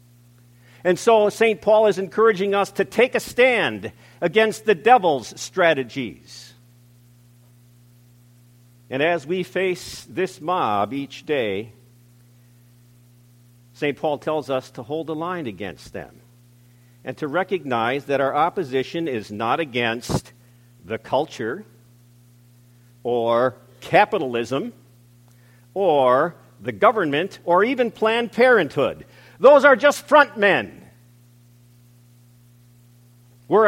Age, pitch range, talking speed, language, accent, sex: 50-69, 120-190 Hz, 105 wpm, English, American, male